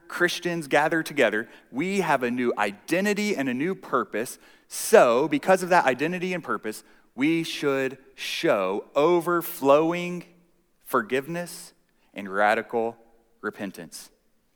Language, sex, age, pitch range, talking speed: English, male, 30-49, 120-175 Hz, 110 wpm